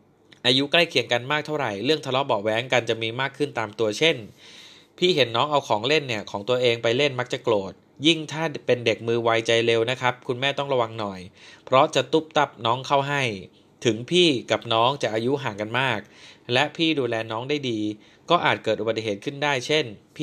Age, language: 20-39, Thai